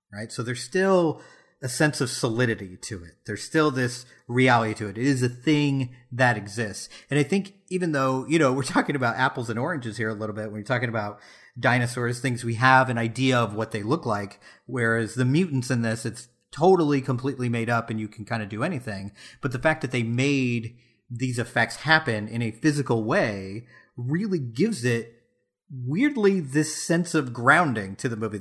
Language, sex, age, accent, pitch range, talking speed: English, male, 40-59, American, 115-150 Hz, 200 wpm